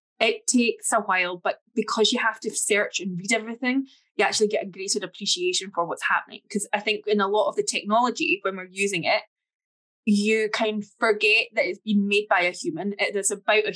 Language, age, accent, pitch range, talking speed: English, 10-29, British, 195-235 Hz, 225 wpm